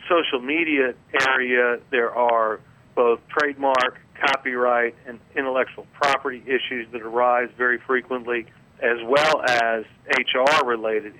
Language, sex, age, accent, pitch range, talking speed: English, male, 40-59, American, 115-130 Hz, 105 wpm